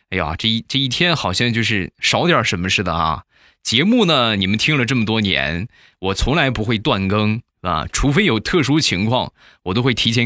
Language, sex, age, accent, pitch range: Chinese, male, 20-39, native, 100-135 Hz